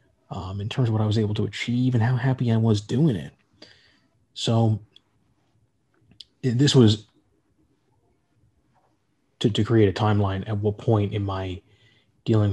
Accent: American